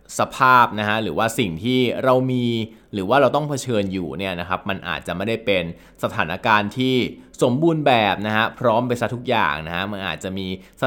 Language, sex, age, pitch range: Thai, male, 20-39, 100-130 Hz